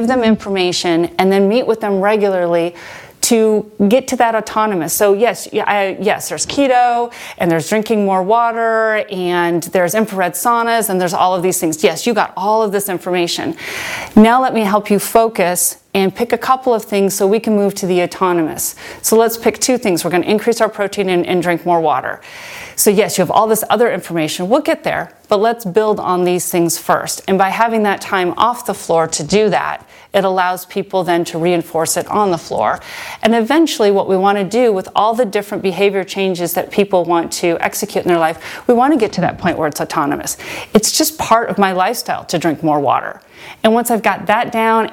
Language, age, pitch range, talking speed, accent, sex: English, 30-49, 180-225 Hz, 215 wpm, American, female